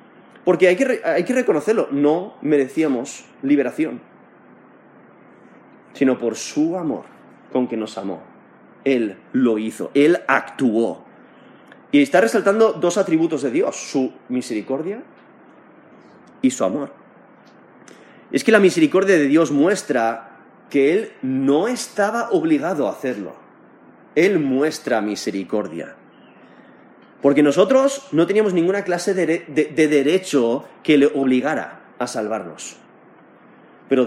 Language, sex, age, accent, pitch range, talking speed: Spanish, male, 30-49, Spanish, 140-225 Hz, 115 wpm